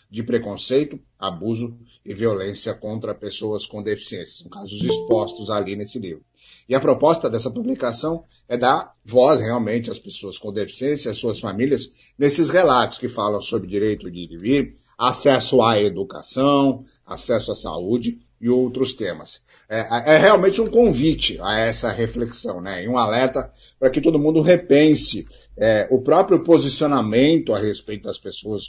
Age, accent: 60-79, Brazilian